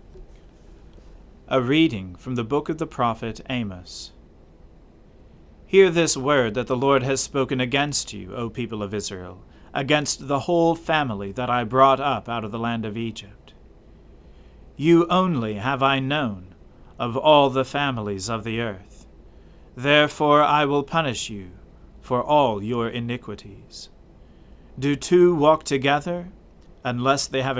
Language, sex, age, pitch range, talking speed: English, male, 40-59, 105-145 Hz, 140 wpm